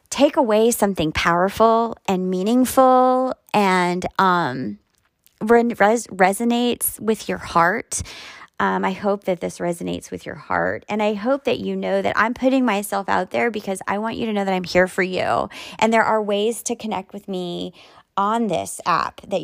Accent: American